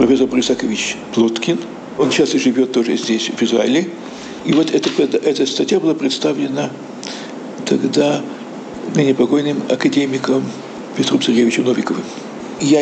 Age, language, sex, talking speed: 60-79, Russian, male, 120 wpm